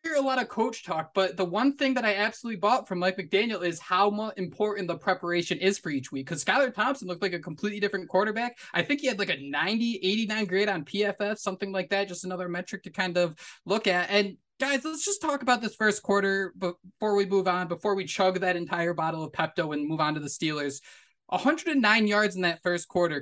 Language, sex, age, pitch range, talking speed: English, male, 20-39, 180-225 Hz, 235 wpm